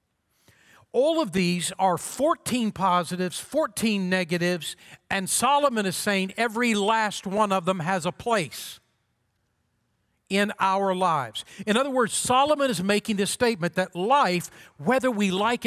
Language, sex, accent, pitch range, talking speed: English, male, American, 175-230 Hz, 140 wpm